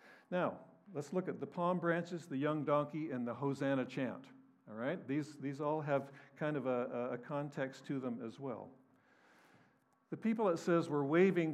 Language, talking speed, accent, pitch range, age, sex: English, 180 wpm, American, 130-155 Hz, 60-79, male